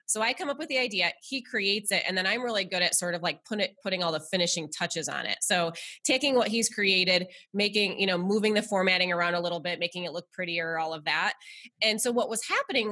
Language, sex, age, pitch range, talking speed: English, female, 20-39, 180-240 Hz, 245 wpm